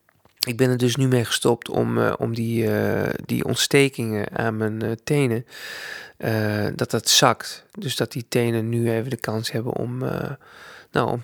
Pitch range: 115-130 Hz